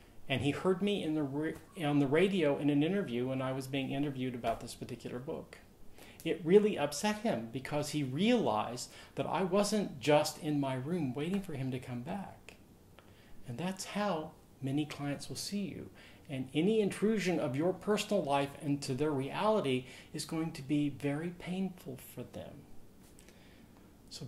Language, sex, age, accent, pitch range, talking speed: English, male, 40-59, American, 130-160 Hz, 165 wpm